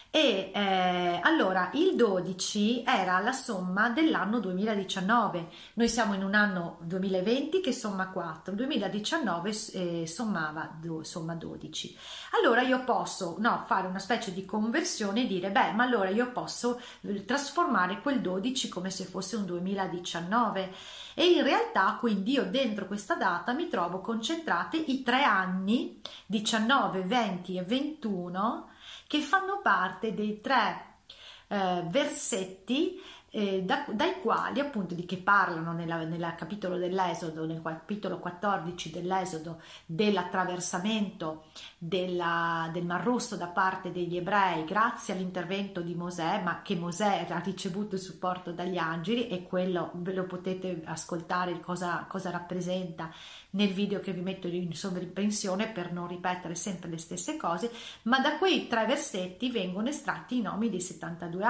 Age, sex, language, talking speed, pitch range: 40-59, female, Italian, 140 wpm, 180-235 Hz